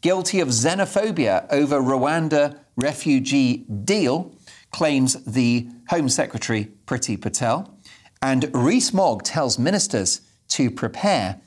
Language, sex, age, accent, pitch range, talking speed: English, male, 40-59, British, 110-145 Hz, 100 wpm